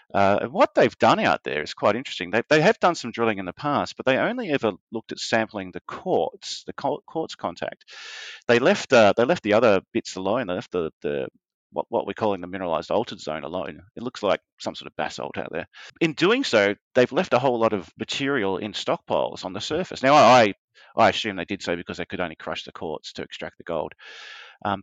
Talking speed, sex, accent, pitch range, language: 230 wpm, male, Australian, 100-125 Hz, English